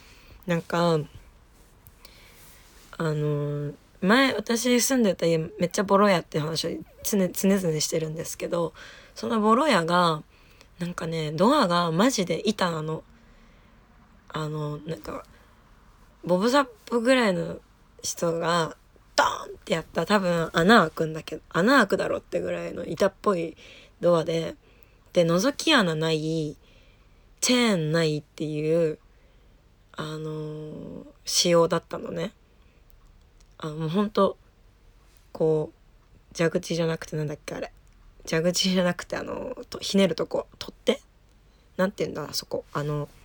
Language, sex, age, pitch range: Japanese, female, 20-39, 155-185 Hz